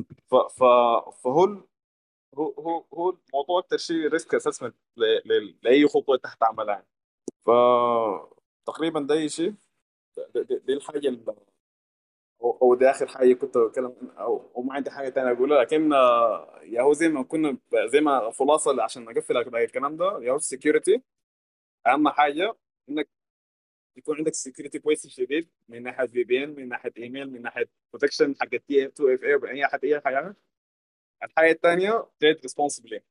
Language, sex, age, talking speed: Arabic, male, 20-39, 140 wpm